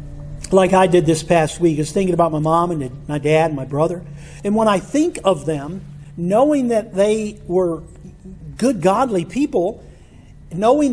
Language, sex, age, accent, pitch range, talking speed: English, male, 50-69, American, 155-225 Hz, 175 wpm